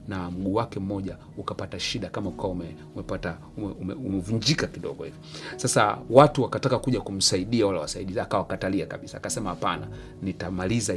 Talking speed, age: 130 wpm, 30-49